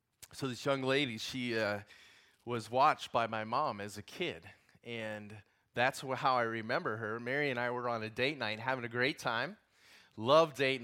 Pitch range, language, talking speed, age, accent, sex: 120-170 Hz, English, 190 wpm, 20-39, American, male